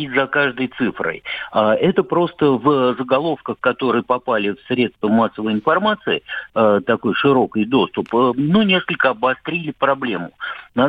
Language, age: Russian, 50-69